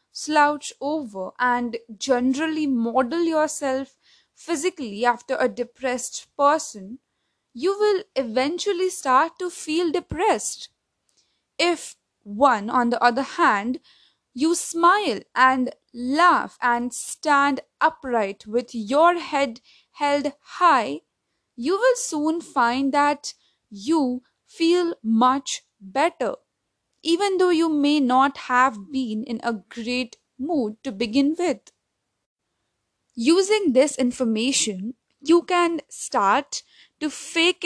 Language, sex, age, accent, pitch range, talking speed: English, female, 20-39, Indian, 250-330 Hz, 105 wpm